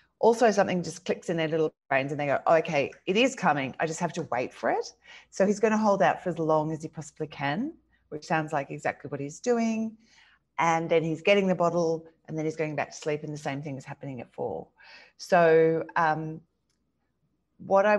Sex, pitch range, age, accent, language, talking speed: female, 160-220 Hz, 40-59, Australian, English, 225 wpm